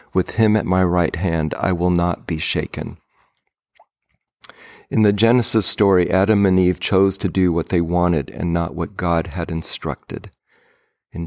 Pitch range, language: 85-105 Hz, English